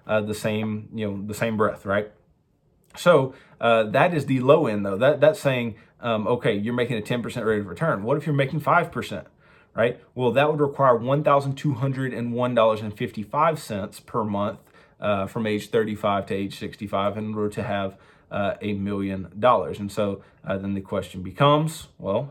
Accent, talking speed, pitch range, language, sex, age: American, 170 wpm, 105-145 Hz, English, male, 30-49